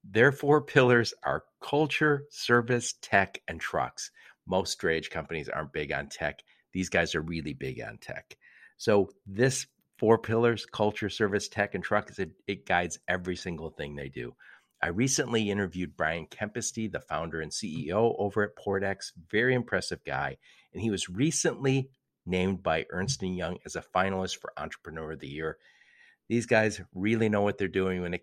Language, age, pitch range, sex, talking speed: English, 50-69, 85-115 Hz, male, 170 wpm